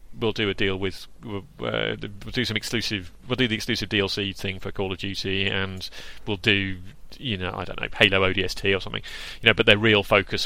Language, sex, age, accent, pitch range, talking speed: English, male, 30-49, British, 95-115 Hz, 225 wpm